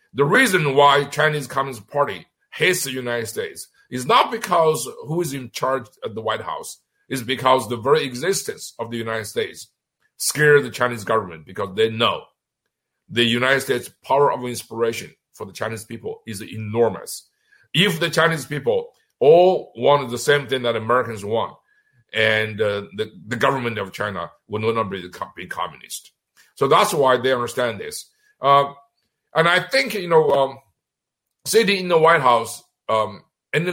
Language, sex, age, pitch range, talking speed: English, male, 50-69, 110-150 Hz, 165 wpm